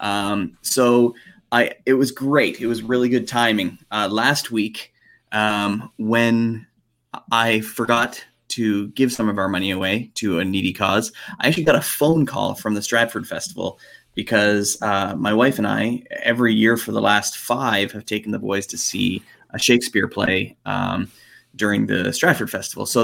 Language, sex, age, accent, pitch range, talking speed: English, male, 20-39, American, 100-120 Hz, 170 wpm